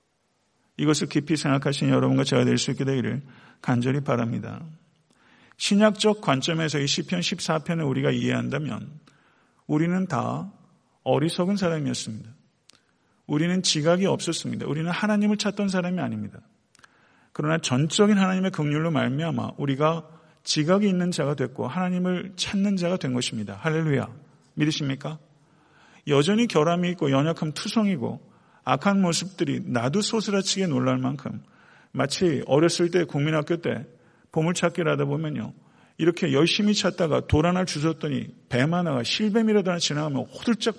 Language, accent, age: Korean, native, 40-59